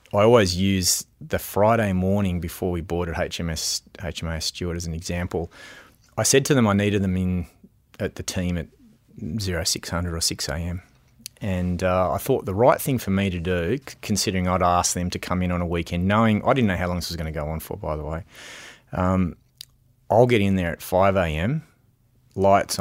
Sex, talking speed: male, 205 wpm